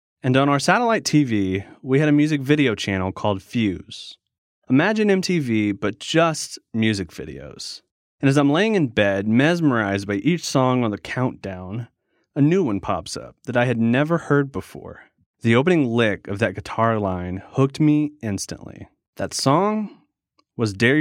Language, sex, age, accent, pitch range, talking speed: English, male, 30-49, American, 105-145 Hz, 165 wpm